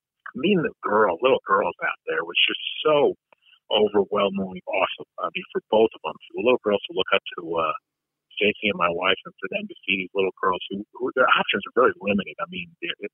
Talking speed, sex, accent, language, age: 225 wpm, male, American, English, 50-69